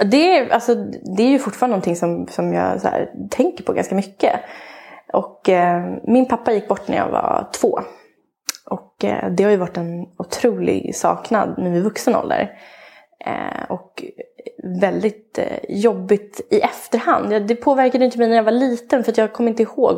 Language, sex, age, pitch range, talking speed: English, female, 20-39, 180-235 Hz, 185 wpm